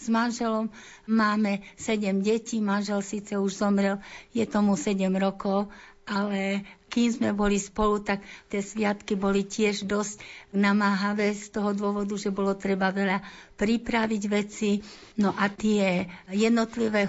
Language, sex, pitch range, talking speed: Slovak, female, 195-215 Hz, 135 wpm